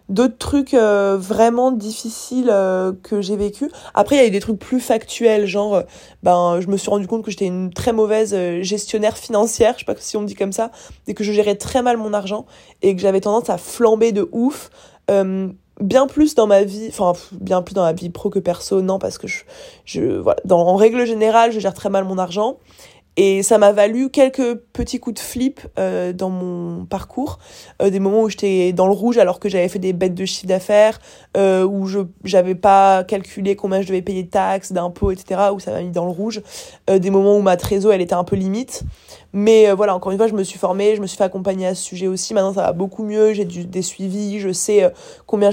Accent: French